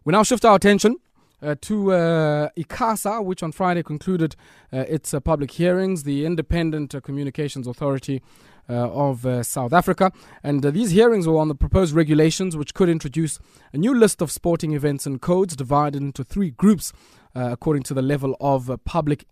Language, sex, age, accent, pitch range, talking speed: English, male, 20-39, South African, 130-170 Hz, 185 wpm